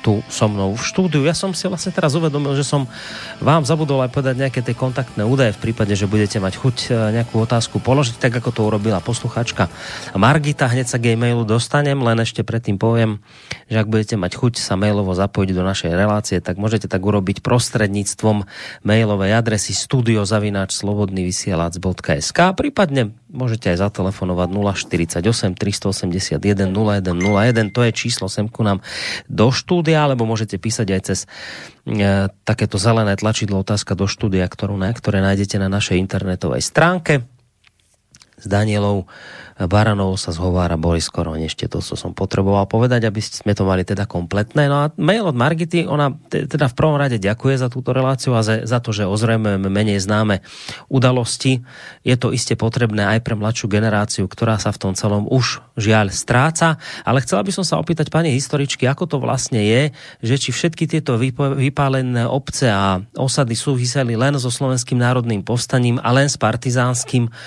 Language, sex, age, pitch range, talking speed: Slovak, male, 30-49, 100-130 Hz, 165 wpm